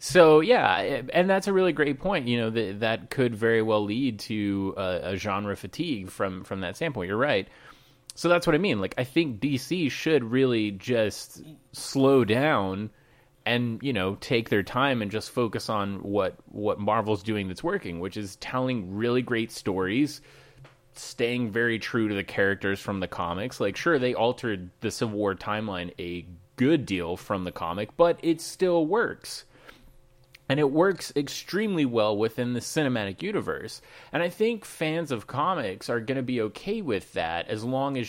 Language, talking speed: English, 180 wpm